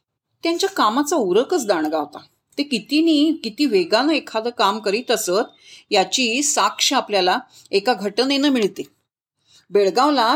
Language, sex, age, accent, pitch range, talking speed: Marathi, female, 40-59, native, 215-280 Hz, 110 wpm